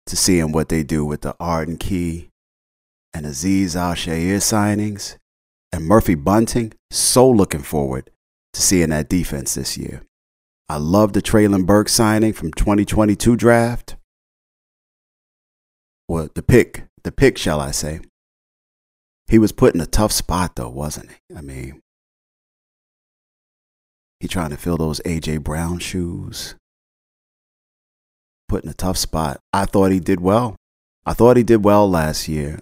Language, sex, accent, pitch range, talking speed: English, male, American, 75-100 Hz, 145 wpm